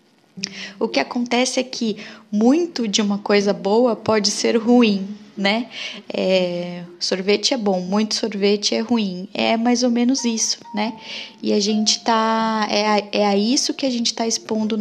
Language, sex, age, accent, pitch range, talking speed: Portuguese, female, 10-29, Brazilian, 195-235 Hz, 165 wpm